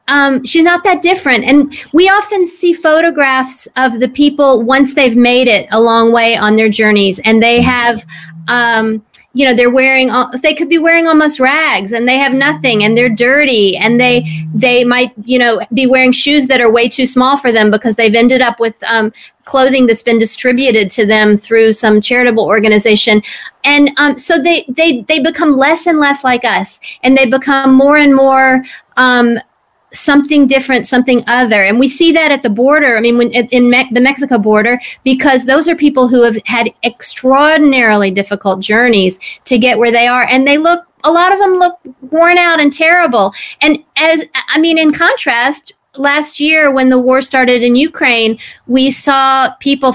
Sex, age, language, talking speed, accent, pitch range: female, 40-59, English, 190 wpm, American, 235-290 Hz